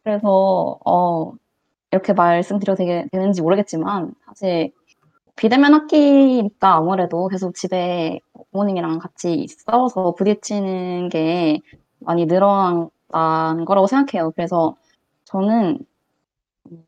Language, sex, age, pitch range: Korean, female, 20-39, 175-230 Hz